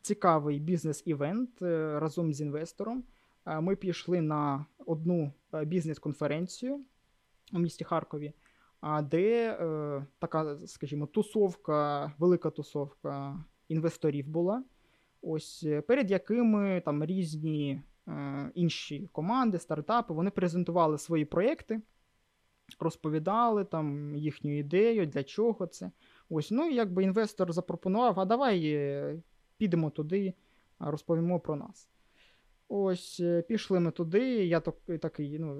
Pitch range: 150-195 Hz